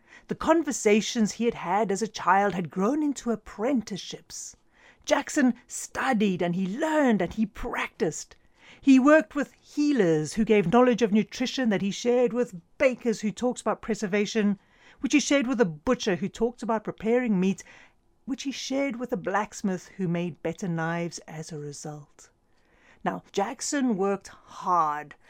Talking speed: 155 wpm